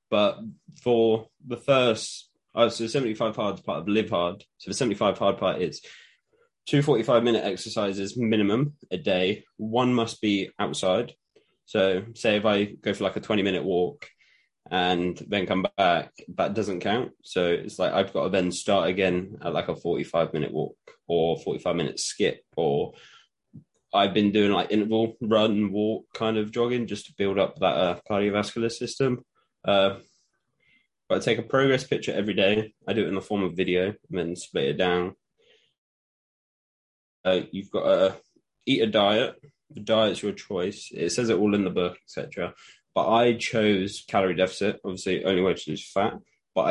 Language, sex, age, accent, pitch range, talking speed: English, male, 20-39, British, 95-120 Hz, 185 wpm